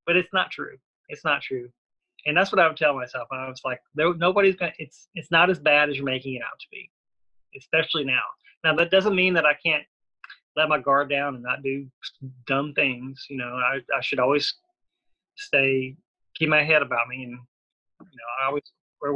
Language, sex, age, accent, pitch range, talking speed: English, male, 30-49, American, 130-155 Hz, 210 wpm